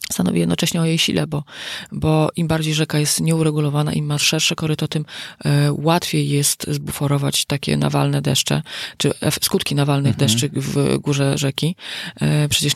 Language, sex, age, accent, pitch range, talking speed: Polish, female, 30-49, native, 140-155 Hz, 145 wpm